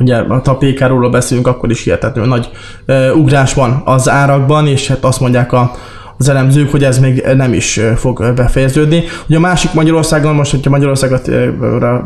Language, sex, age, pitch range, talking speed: Hungarian, male, 20-39, 120-140 Hz, 190 wpm